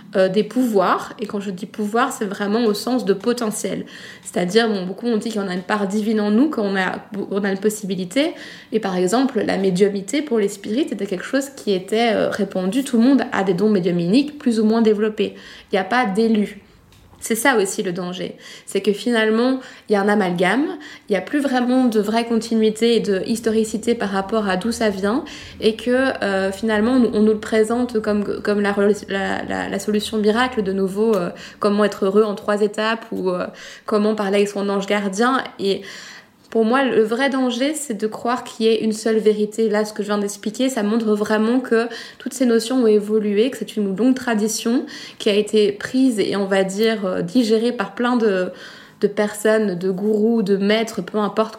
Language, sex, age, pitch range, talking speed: French, female, 20-39, 200-235 Hz, 205 wpm